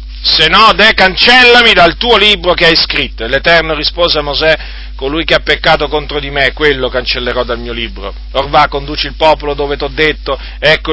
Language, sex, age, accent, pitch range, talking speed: Italian, male, 40-59, native, 135-185 Hz, 200 wpm